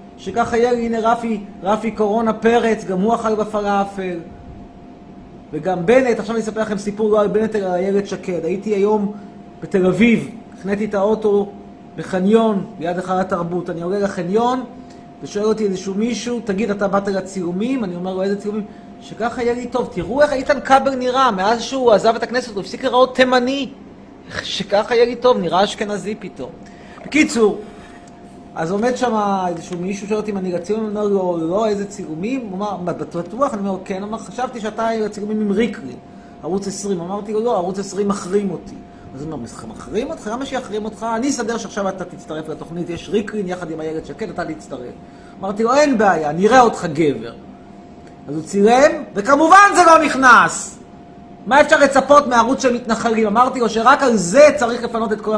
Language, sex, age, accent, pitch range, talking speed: Hebrew, male, 30-49, native, 195-235 Hz, 170 wpm